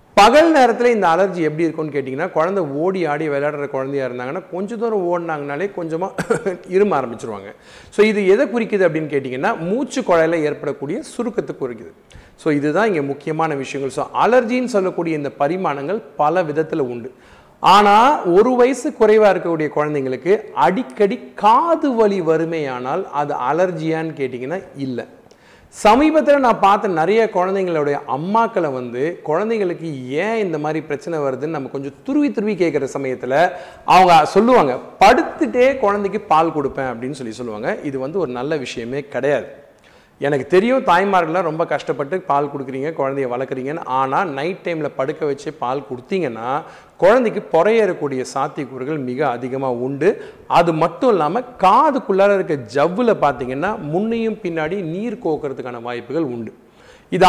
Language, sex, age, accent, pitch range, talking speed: Tamil, male, 40-59, native, 140-205 Hz, 135 wpm